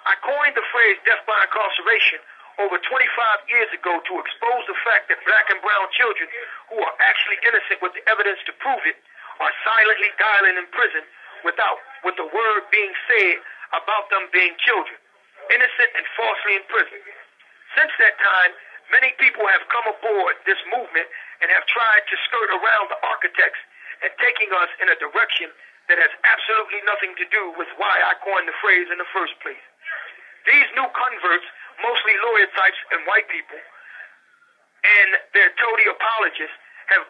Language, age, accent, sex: English, 50-69, American, male